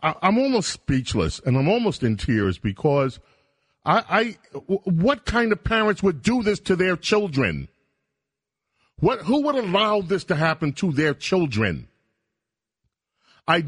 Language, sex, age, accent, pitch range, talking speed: English, male, 40-59, American, 125-185 Hz, 125 wpm